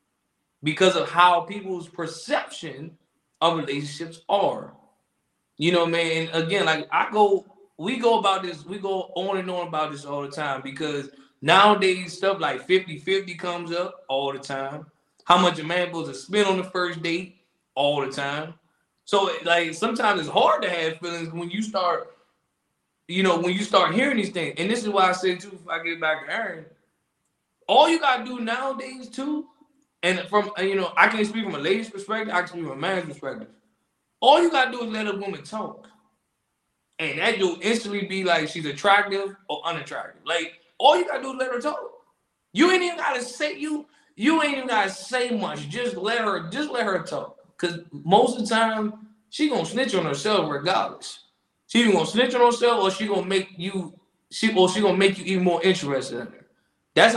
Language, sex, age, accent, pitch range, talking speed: English, male, 20-39, American, 170-220 Hz, 200 wpm